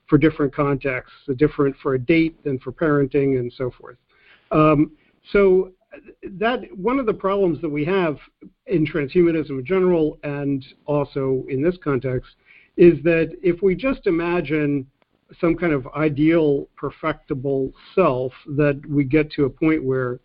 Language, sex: English, male